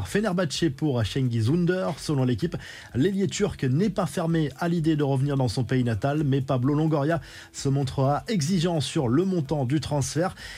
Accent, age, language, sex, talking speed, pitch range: French, 20-39, French, male, 170 wpm, 130-165 Hz